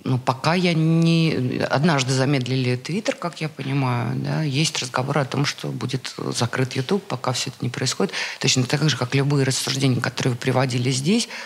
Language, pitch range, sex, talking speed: Russian, 130-175 Hz, female, 180 wpm